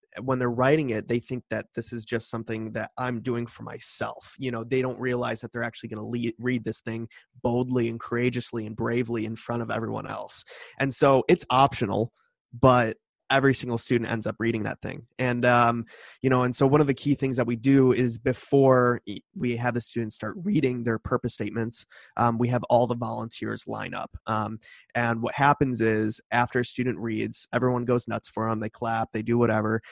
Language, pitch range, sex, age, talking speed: English, 115-130 Hz, male, 20-39, 210 wpm